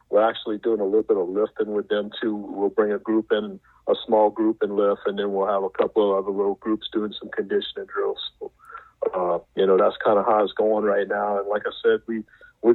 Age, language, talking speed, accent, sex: 50-69, English, 250 wpm, American, male